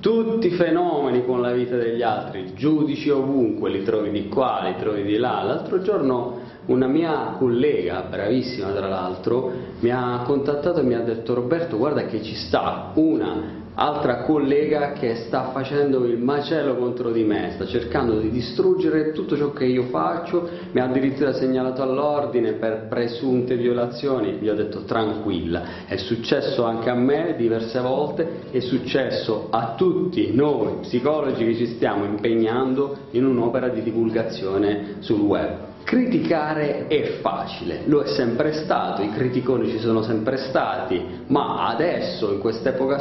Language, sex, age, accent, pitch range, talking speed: Italian, male, 40-59, native, 110-140 Hz, 155 wpm